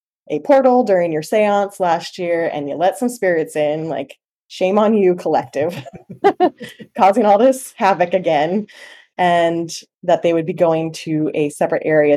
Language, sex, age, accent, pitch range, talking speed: English, female, 20-39, American, 155-190 Hz, 165 wpm